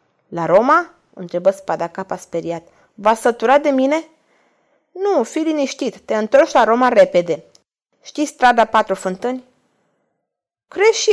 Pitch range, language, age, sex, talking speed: 195-250 Hz, Romanian, 20-39, female, 125 wpm